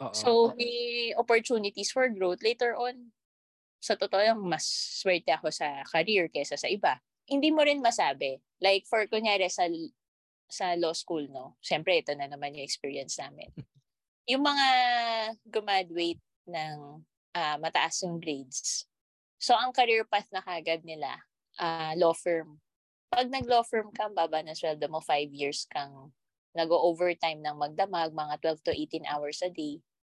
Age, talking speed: 20-39, 145 wpm